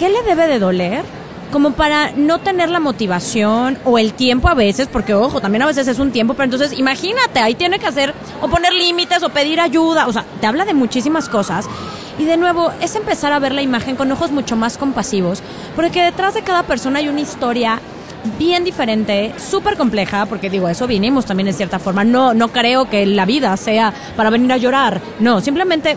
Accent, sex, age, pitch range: Mexican, female, 20-39, 225-305 Hz